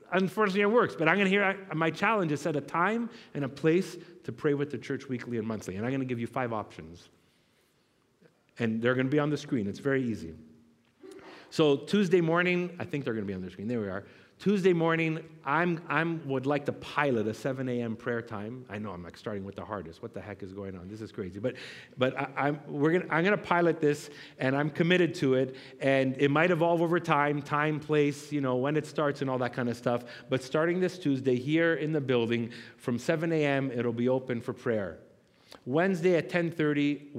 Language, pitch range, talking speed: English, 115-165 Hz, 230 wpm